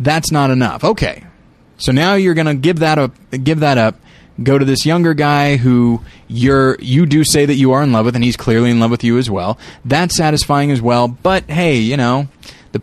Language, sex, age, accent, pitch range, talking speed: English, male, 20-39, American, 115-150 Hz, 210 wpm